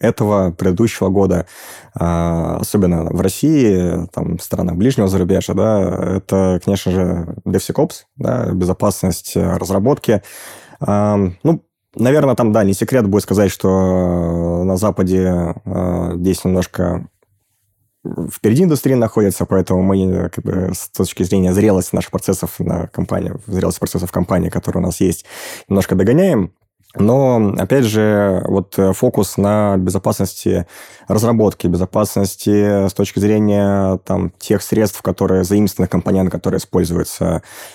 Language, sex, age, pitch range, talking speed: Russian, male, 20-39, 90-105 Hz, 125 wpm